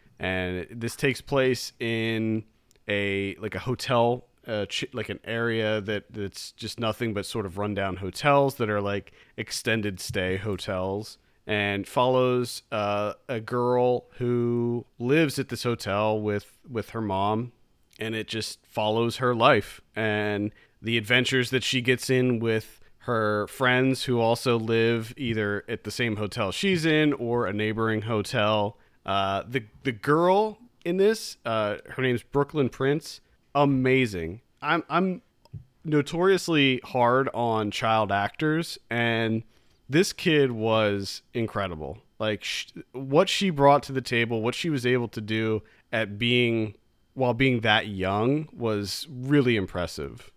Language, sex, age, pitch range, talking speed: English, male, 40-59, 105-130 Hz, 140 wpm